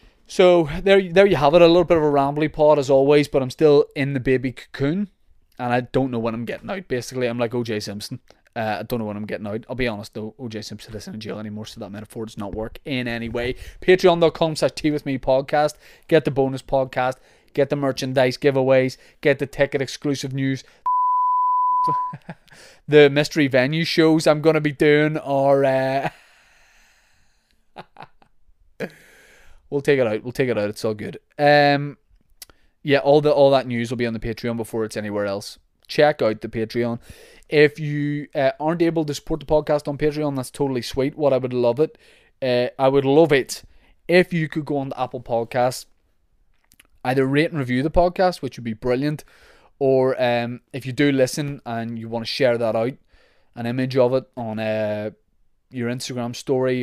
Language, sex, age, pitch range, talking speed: English, male, 20-39, 120-150 Hz, 195 wpm